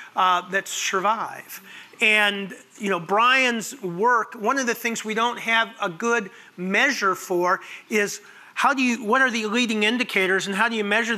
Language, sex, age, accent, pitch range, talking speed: English, male, 40-59, American, 190-225 Hz, 175 wpm